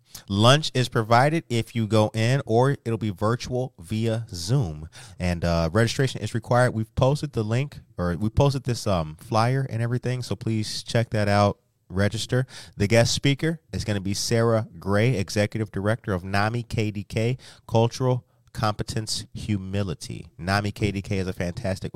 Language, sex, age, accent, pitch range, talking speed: English, male, 30-49, American, 100-130 Hz, 160 wpm